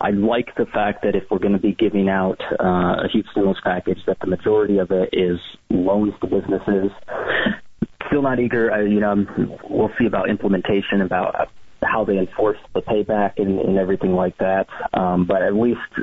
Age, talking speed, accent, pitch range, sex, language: 30-49, 185 wpm, American, 95-110 Hz, male, English